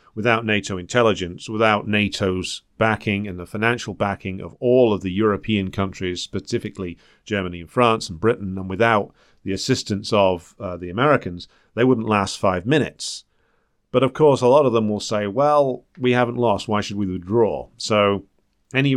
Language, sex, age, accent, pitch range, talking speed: English, male, 40-59, British, 95-120 Hz, 170 wpm